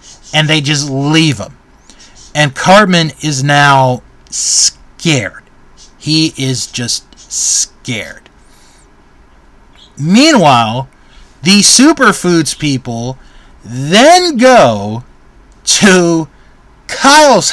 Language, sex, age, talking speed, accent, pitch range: English, male, 30-49, 75 wpm, American, 130-210 Hz